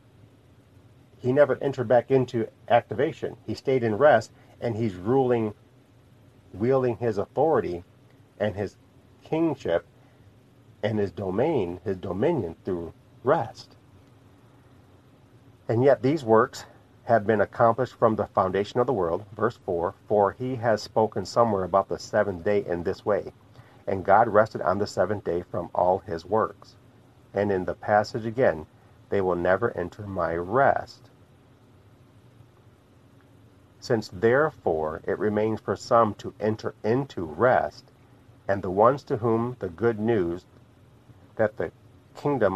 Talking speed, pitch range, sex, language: 135 wpm, 100-125 Hz, male, English